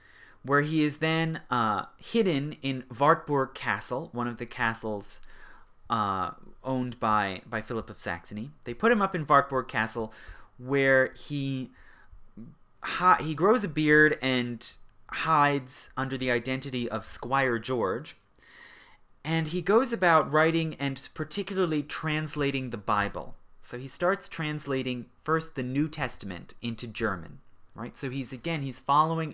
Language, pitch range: English, 115-155 Hz